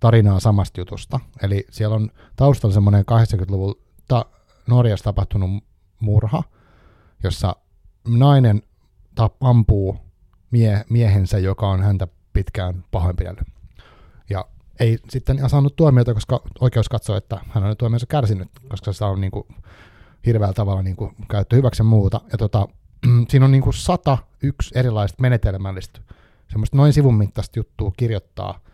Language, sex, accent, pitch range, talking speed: Finnish, male, native, 95-115 Hz, 130 wpm